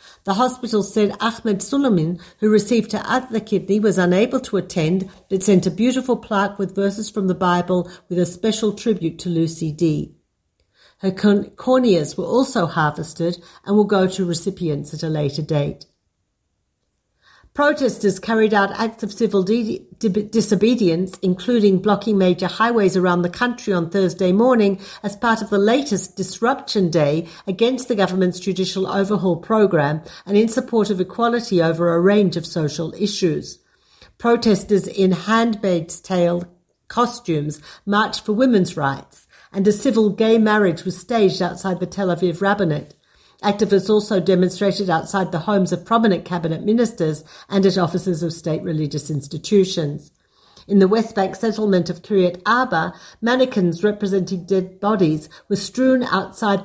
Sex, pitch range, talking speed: female, 180-215 Hz, 150 wpm